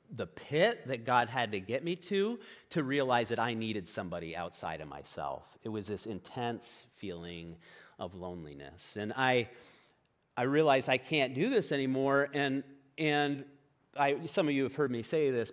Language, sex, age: English, male, 30-49